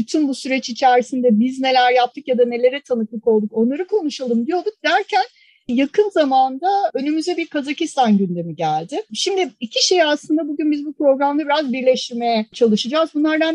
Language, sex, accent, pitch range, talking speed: Turkish, female, native, 235-295 Hz, 155 wpm